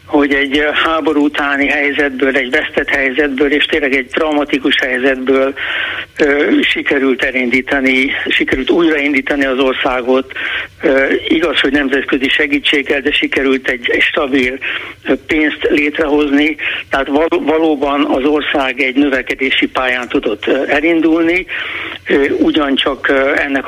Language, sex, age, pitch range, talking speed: Hungarian, male, 60-79, 135-155 Hz, 100 wpm